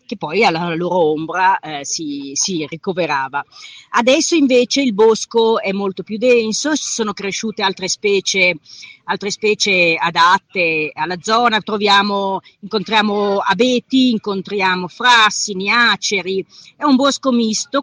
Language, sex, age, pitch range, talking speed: Italian, female, 40-59, 190-250 Hz, 115 wpm